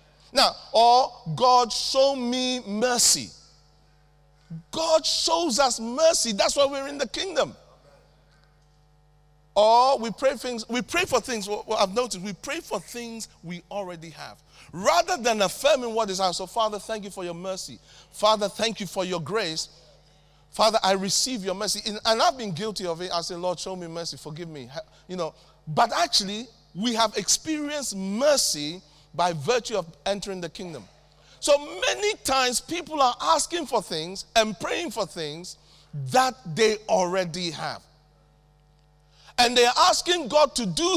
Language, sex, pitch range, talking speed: English, male, 155-245 Hz, 160 wpm